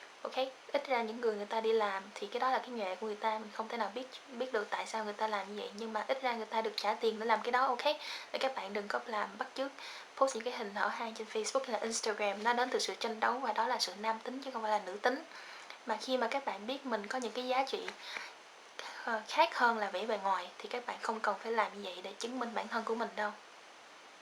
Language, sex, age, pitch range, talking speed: Vietnamese, female, 10-29, 215-255 Hz, 290 wpm